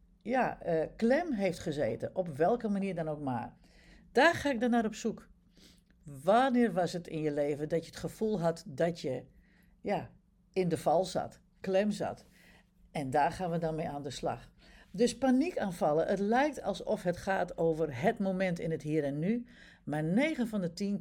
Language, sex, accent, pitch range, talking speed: Dutch, female, Dutch, 165-220 Hz, 195 wpm